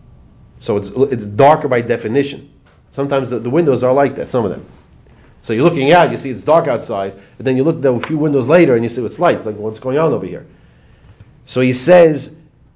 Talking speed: 230 wpm